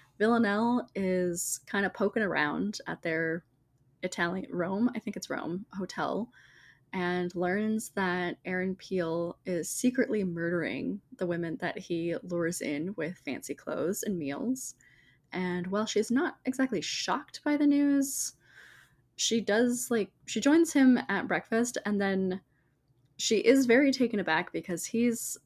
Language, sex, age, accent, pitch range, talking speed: English, female, 20-39, American, 170-210 Hz, 140 wpm